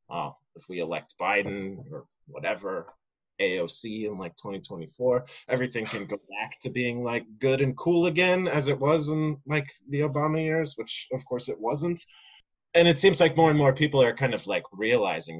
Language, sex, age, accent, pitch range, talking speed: English, male, 30-49, American, 125-170 Hz, 185 wpm